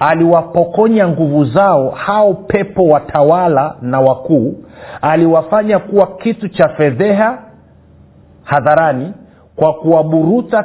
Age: 50-69